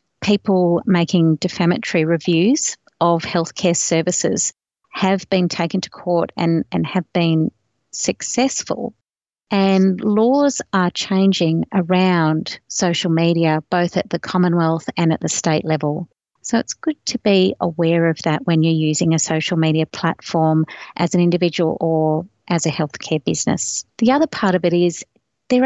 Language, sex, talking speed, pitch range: English, female, 145 wpm, 165-190 Hz